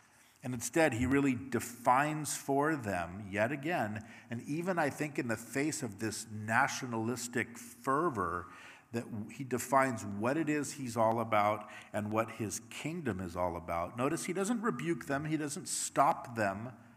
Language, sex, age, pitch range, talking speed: English, male, 50-69, 110-150 Hz, 160 wpm